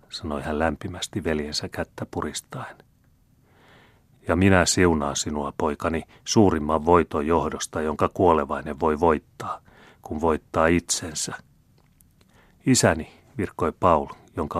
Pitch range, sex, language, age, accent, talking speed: 80-100 Hz, male, Finnish, 30-49, native, 100 wpm